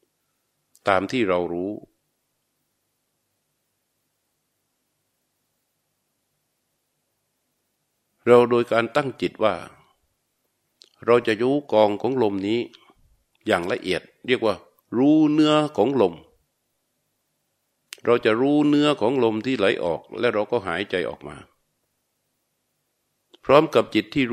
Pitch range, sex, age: 105-130 Hz, male, 60-79